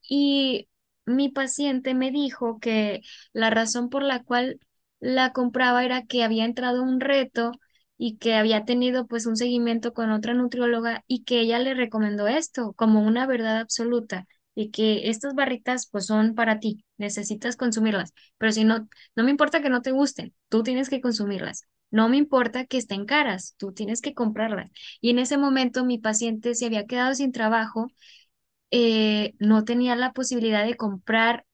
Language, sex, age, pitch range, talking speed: Spanish, female, 10-29, 225-265 Hz, 175 wpm